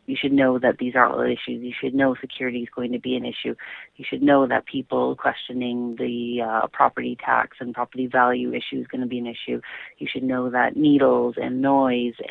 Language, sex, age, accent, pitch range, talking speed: English, female, 30-49, American, 125-145 Hz, 220 wpm